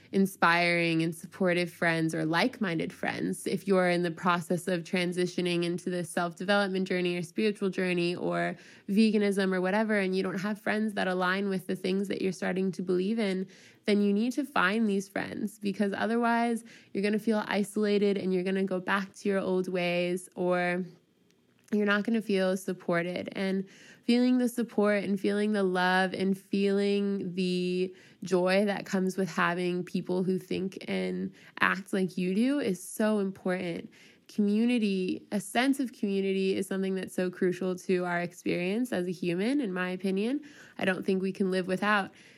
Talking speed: 175 wpm